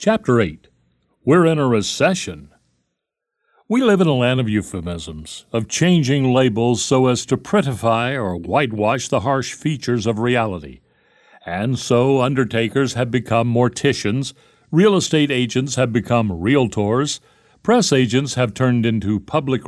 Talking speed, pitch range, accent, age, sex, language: 135 wpm, 115-145 Hz, American, 60-79, male, English